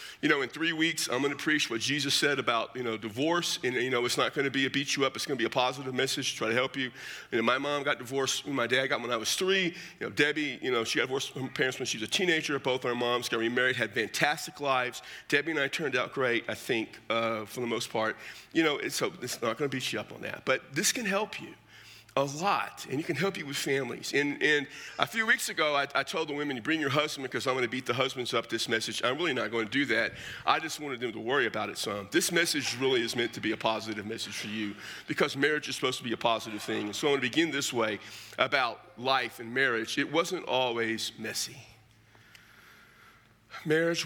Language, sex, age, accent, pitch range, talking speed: English, male, 40-59, American, 115-145 Hz, 270 wpm